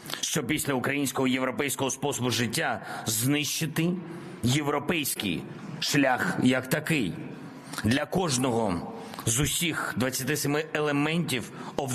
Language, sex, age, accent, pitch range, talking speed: Ukrainian, male, 50-69, native, 130-155 Hz, 85 wpm